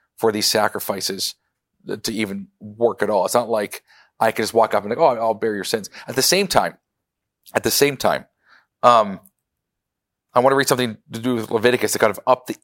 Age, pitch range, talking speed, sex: 40-59, 110-140 Hz, 220 wpm, male